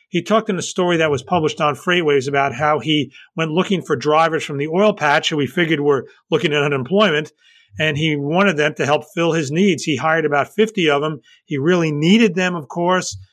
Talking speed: 220 wpm